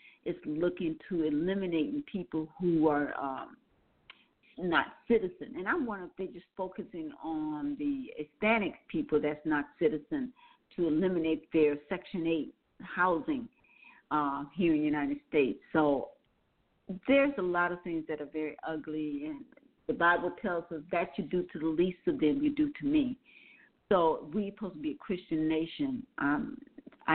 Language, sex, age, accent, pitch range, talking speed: English, female, 50-69, American, 160-265 Hz, 155 wpm